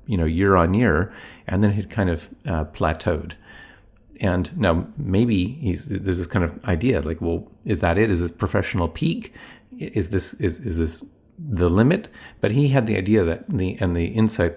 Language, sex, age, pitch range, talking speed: English, male, 50-69, 85-110 Hz, 200 wpm